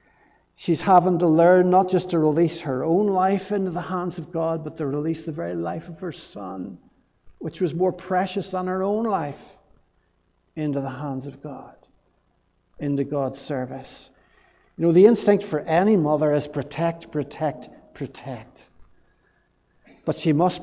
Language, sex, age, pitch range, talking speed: English, male, 60-79, 145-180 Hz, 160 wpm